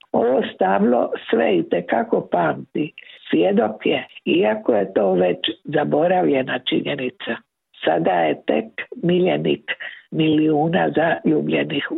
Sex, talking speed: female, 90 wpm